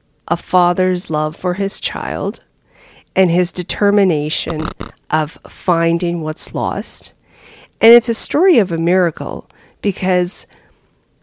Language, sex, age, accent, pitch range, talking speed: English, female, 40-59, American, 155-200 Hz, 110 wpm